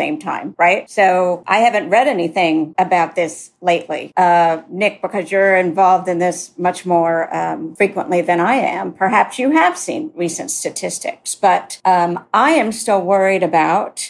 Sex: female